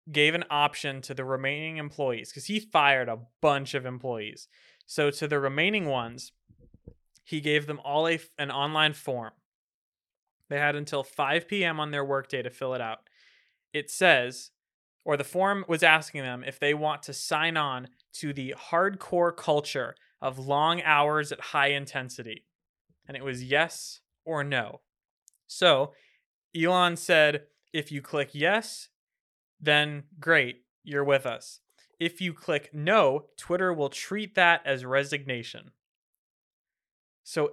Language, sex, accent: English, male, American